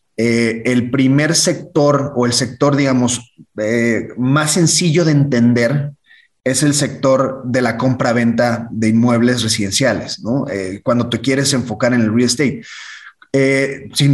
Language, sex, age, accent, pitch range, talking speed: Spanish, male, 30-49, Mexican, 125-150 Hz, 150 wpm